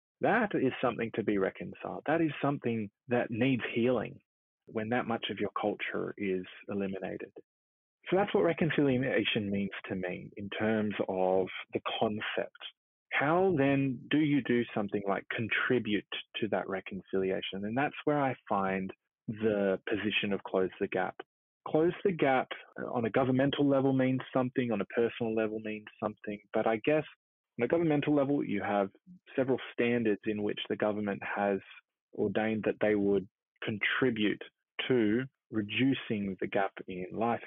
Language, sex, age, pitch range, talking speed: English, male, 20-39, 100-130 Hz, 150 wpm